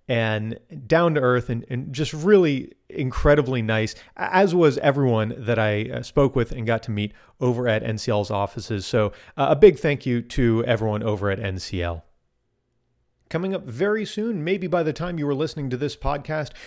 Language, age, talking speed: English, 40-59, 180 wpm